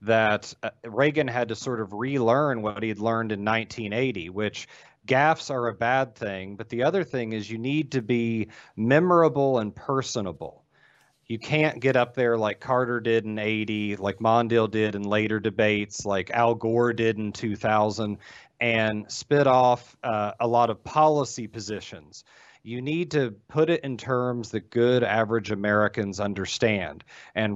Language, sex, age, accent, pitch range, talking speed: English, male, 40-59, American, 105-125 Hz, 160 wpm